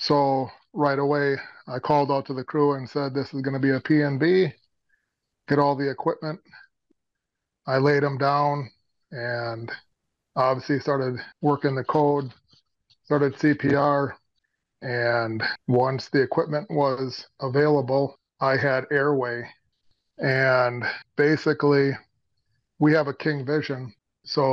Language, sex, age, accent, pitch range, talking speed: English, male, 30-49, American, 130-145 Hz, 125 wpm